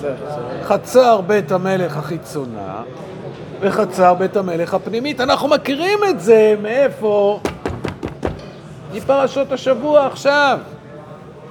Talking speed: 85 wpm